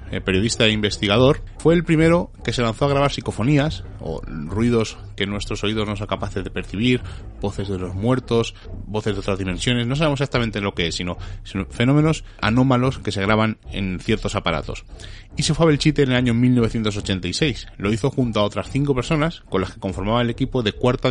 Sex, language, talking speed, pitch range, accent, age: male, Spanish, 200 wpm, 100-135 Hz, Spanish, 30-49